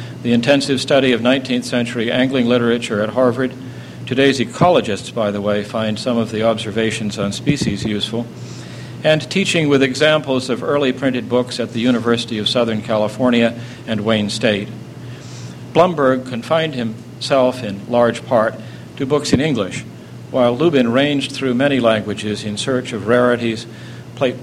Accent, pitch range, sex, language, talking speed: American, 115-140 Hz, male, English, 150 wpm